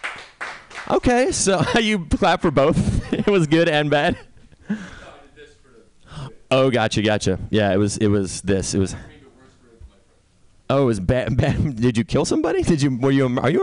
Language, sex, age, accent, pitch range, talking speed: English, male, 30-49, American, 105-140 Hz, 165 wpm